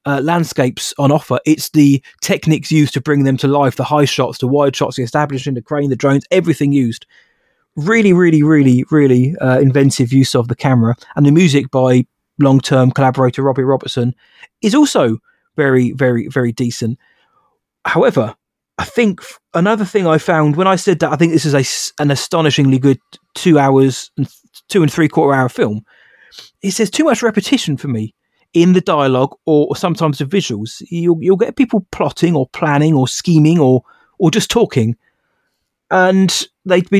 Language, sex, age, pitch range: English, male, 20-39, 135-185 Hz